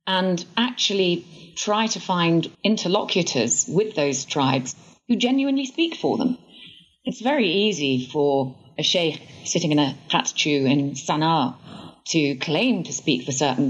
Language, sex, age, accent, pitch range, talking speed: English, female, 30-49, British, 145-200 Hz, 140 wpm